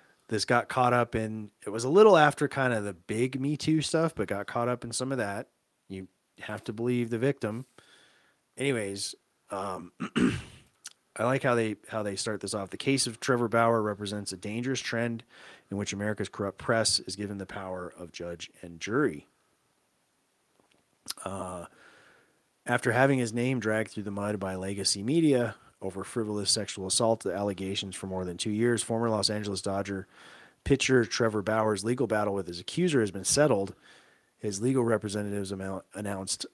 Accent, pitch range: American, 100-120 Hz